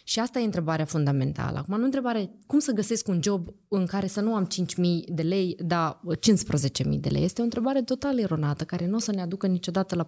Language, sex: Romanian, female